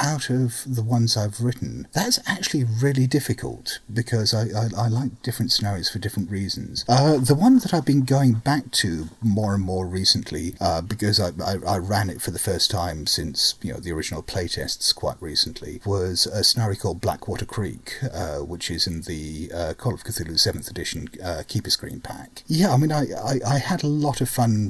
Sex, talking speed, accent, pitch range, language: male, 205 wpm, British, 95-130 Hz, English